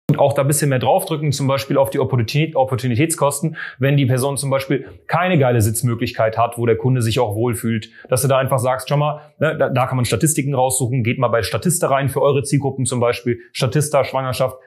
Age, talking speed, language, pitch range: 30-49, 210 wpm, German, 130-165 Hz